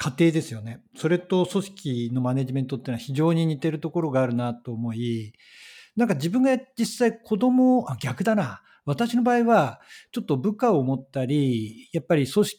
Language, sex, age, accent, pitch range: Japanese, male, 50-69, native, 135-205 Hz